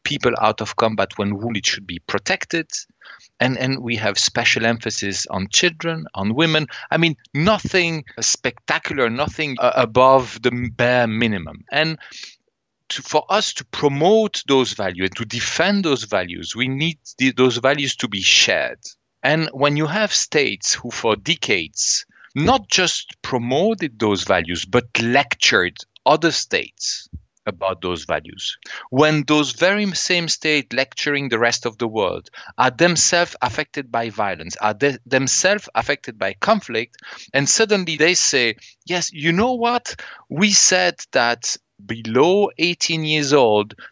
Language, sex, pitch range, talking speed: English, male, 115-165 Hz, 140 wpm